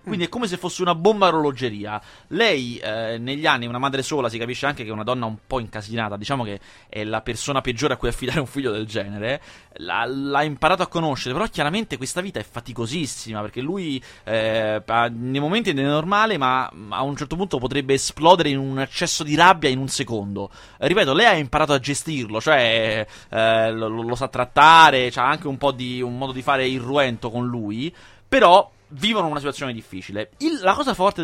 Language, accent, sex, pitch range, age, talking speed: Italian, native, male, 120-180 Hz, 30-49, 205 wpm